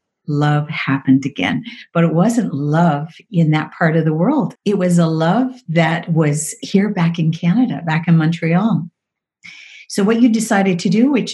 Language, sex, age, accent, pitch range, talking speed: English, female, 50-69, American, 165-205 Hz, 175 wpm